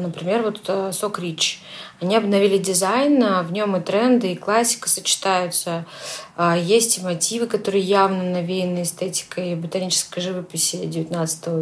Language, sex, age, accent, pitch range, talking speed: Russian, female, 20-39, native, 175-210 Hz, 130 wpm